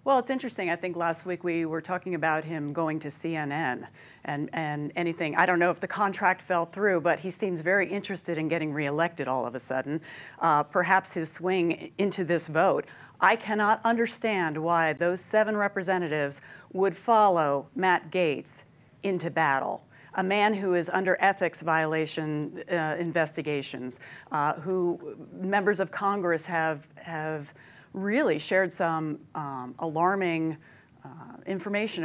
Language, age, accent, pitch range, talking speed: English, 40-59, American, 160-200 Hz, 150 wpm